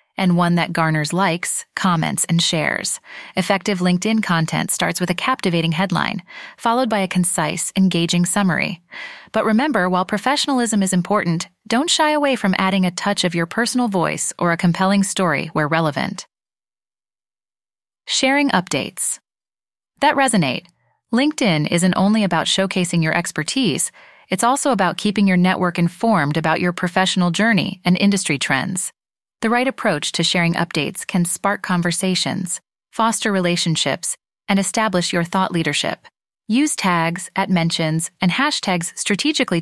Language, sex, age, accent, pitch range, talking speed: English, female, 30-49, American, 175-225 Hz, 140 wpm